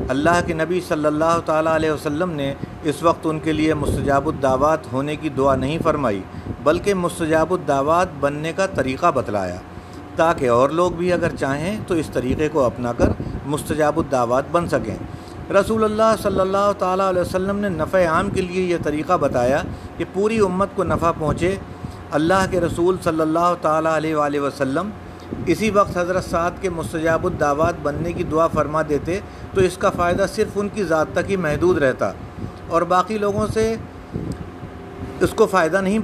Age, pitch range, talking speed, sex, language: 50-69, 140-190 Hz, 180 wpm, male, Urdu